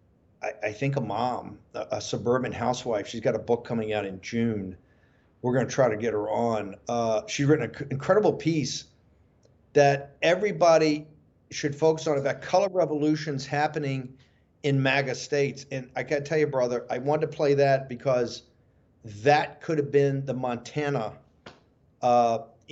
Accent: American